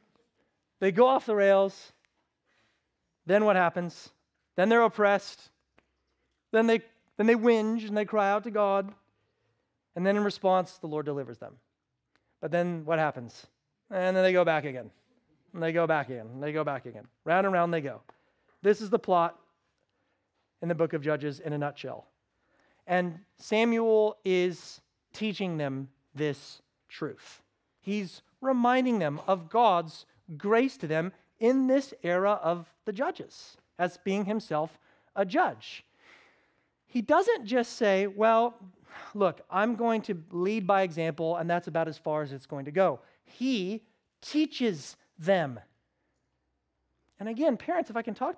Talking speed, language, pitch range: 155 wpm, English, 160-225 Hz